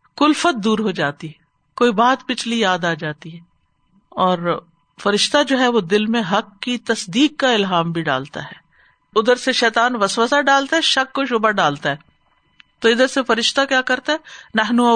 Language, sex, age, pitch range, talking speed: Urdu, female, 50-69, 180-245 Hz, 180 wpm